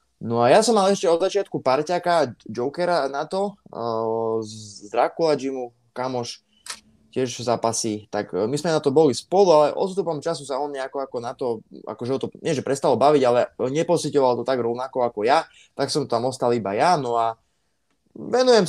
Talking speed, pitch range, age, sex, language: 175 wpm, 110-135 Hz, 20-39, male, Slovak